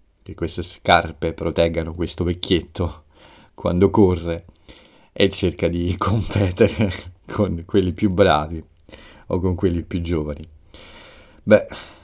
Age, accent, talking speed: 40-59, native, 110 wpm